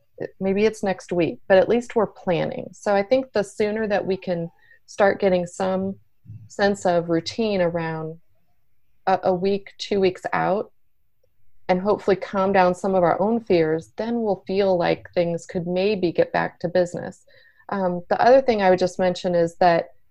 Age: 30-49